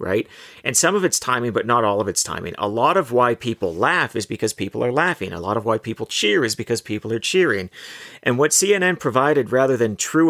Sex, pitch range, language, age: male, 115-145 Hz, English, 40-59